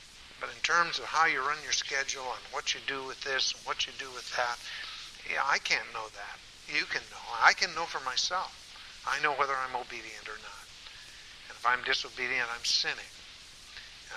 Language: English